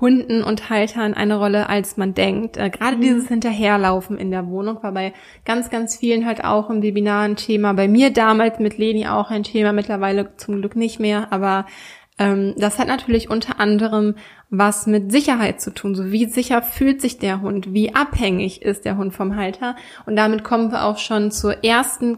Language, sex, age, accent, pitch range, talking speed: German, female, 20-39, German, 205-235 Hz, 195 wpm